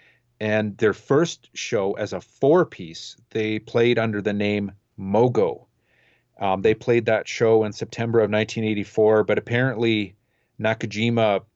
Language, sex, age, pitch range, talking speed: English, male, 40-59, 105-120 Hz, 130 wpm